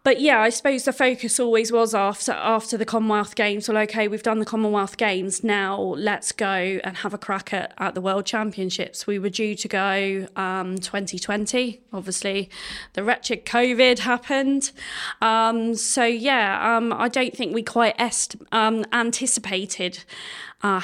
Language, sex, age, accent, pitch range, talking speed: English, female, 20-39, British, 200-230 Hz, 165 wpm